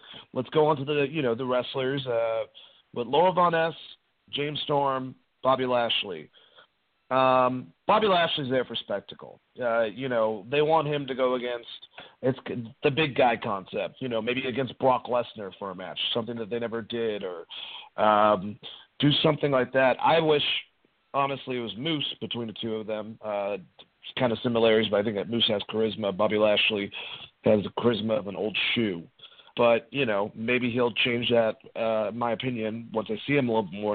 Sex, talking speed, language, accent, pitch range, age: male, 190 wpm, English, American, 110-130 Hz, 40-59